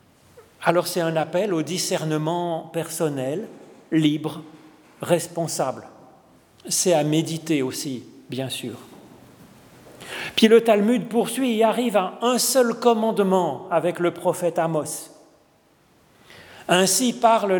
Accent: French